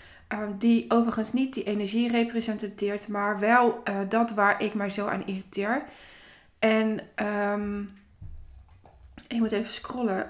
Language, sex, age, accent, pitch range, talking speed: Dutch, female, 20-39, Dutch, 195-235 Hz, 120 wpm